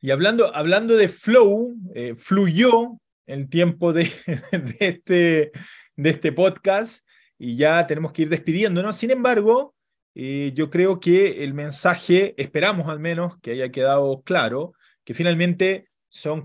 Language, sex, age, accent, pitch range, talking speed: Spanish, male, 30-49, Argentinian, 145-195 Hz, 140 wpm